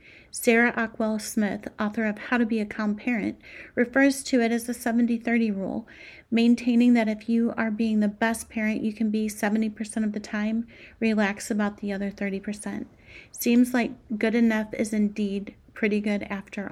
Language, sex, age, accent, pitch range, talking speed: English, female, 30-49, American, 210-245 Hz, 170 wpm